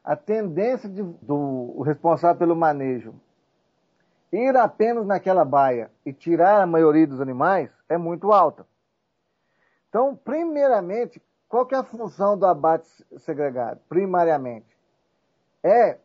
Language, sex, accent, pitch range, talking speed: Portuguese, male, Brazilian, 150-205 Hz, 120 wpm